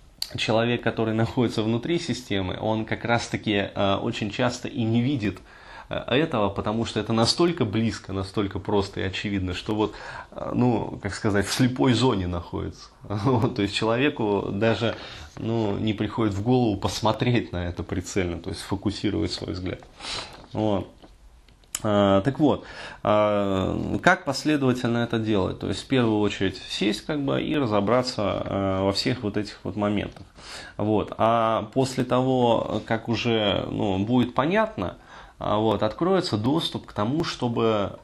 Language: Russian